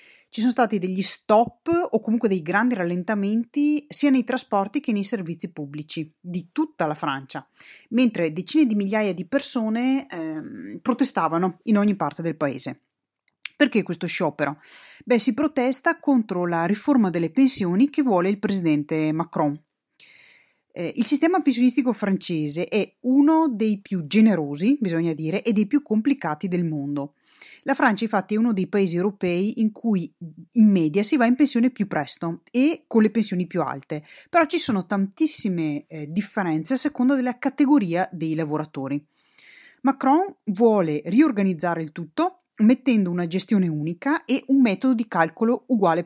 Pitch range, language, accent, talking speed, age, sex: 170-255 Hz, Italian, native, 155 wpm, 30-49, female